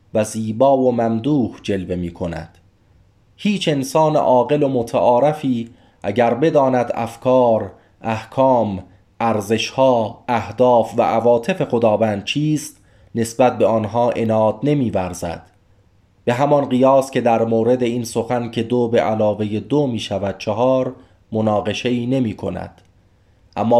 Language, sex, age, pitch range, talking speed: Persian, male, 30-49, 110-135 Hz, 120 wpm